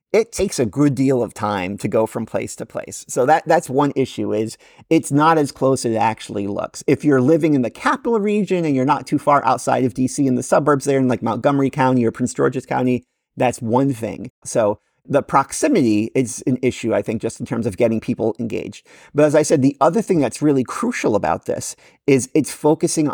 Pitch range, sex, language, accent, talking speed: 120-145 Hz, male, English, American, 225 wpm